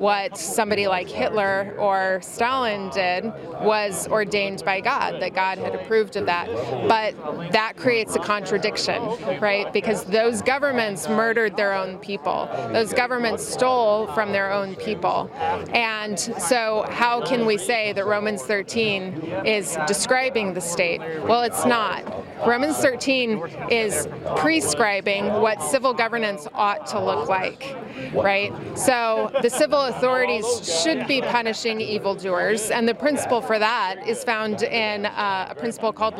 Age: 30-49